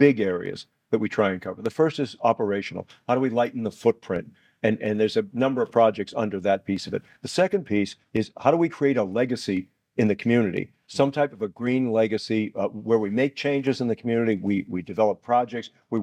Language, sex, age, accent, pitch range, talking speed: English, male, 50-69, American, 110-130 Hz, 230 wpm